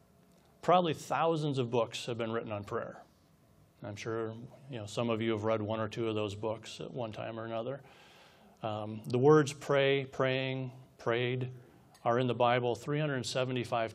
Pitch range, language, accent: 115-135 Hz, English, American